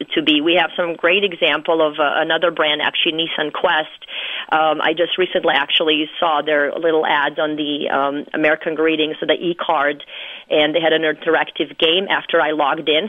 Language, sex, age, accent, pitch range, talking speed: English, female, 30-49, American, 155-205 Hz, 190 wpm